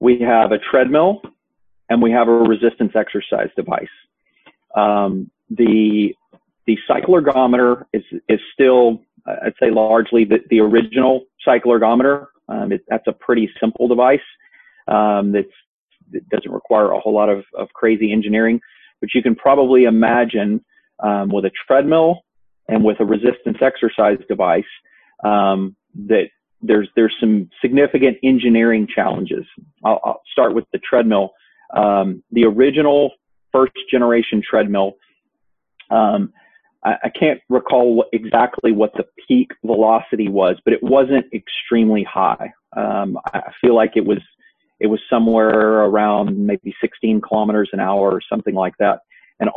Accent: American